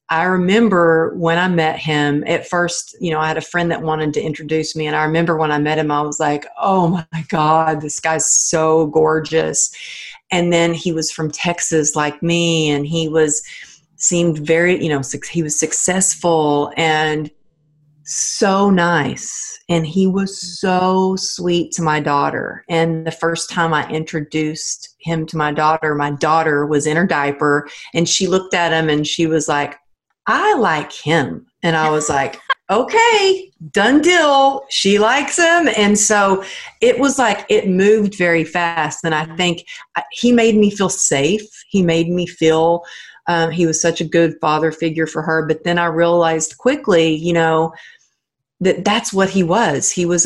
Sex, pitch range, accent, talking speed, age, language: female, 155-180 Hz, American, 175 wpm, 40-59, English